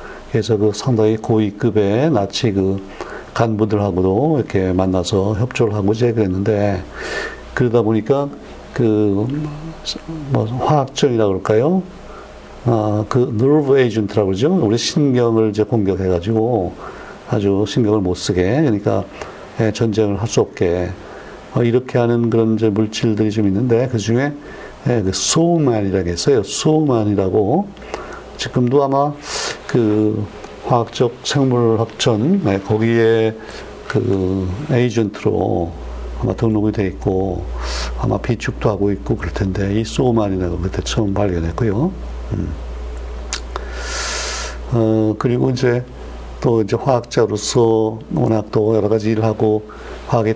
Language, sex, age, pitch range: Korean, male, 60-79, 100-120 Hz